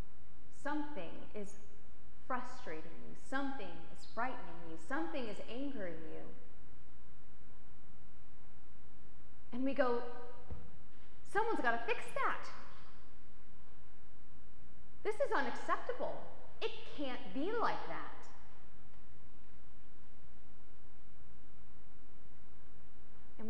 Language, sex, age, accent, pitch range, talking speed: English, female, 30-49, American, 225-290 Hz, 75 wpm